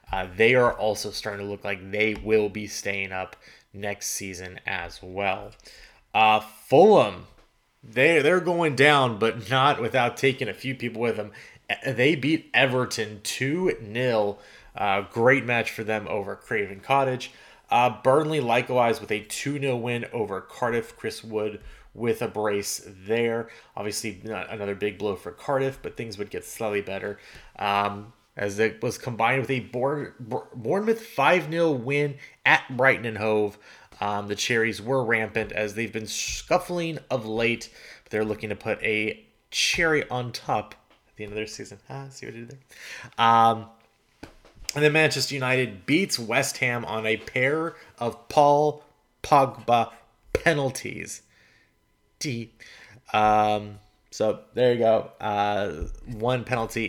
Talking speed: 150 wpm